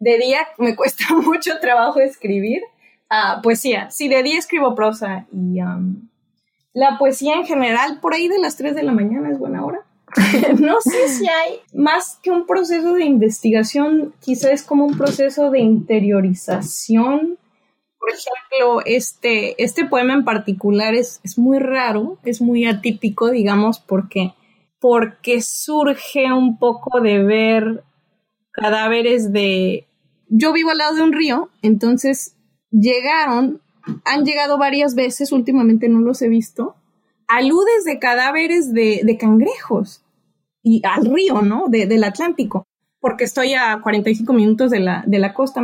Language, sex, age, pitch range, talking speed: Spanish, female, 20-39, 215-280 Hz, 145 wpm